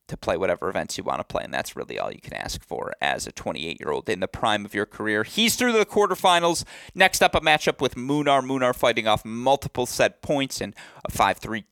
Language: English